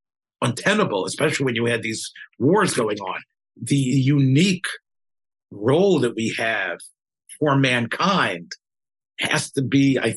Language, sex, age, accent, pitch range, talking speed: English, male, 50-69, American, 120-175 Hz, 125 wpm